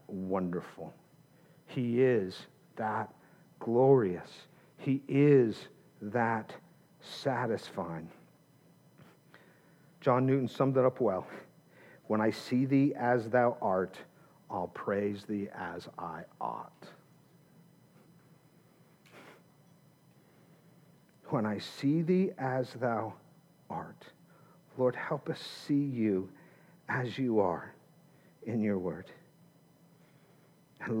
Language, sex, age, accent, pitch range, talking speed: English, male, 50-69, American, 120-165 Hz, 90 wpm